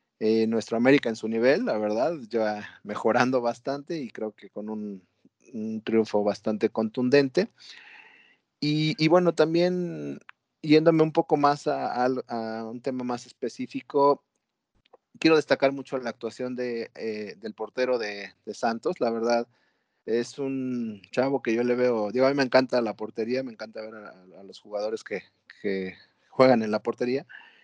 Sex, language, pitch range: male, Spanish, 110-140 Hz